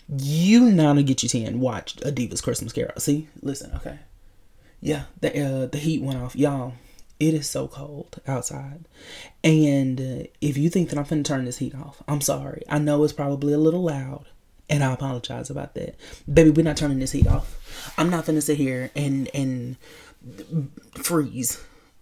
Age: 20-39